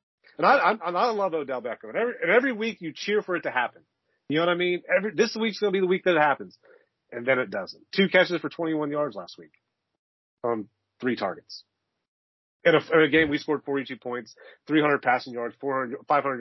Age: 30-49